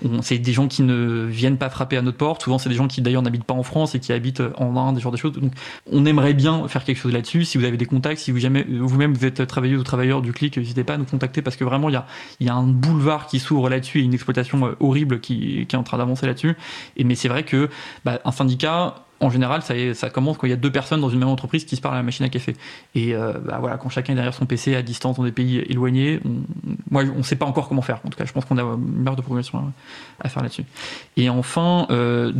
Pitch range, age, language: 125-140 Hz, 20-39, French